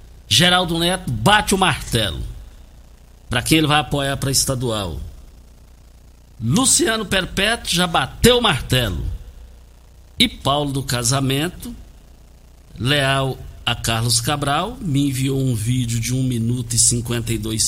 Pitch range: 115-155 Hz